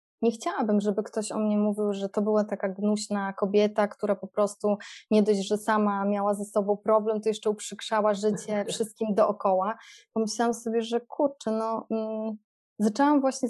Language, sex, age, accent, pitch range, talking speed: Polish, female, 20-39, native, 205-235 Hz, 165 wpm